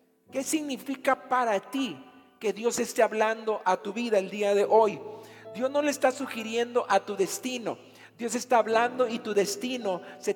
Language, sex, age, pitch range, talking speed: Spanish, male, 50-69, 210-255 Hz, 175 wpm